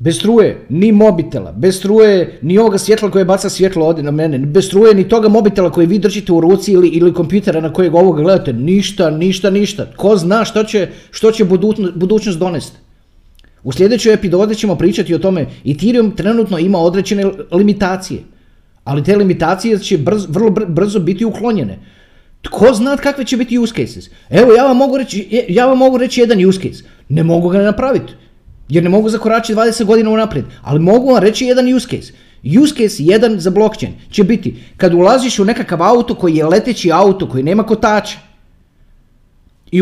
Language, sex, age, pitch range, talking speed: Croatian, male, 30-49, 170-215 Hz, 185 wpm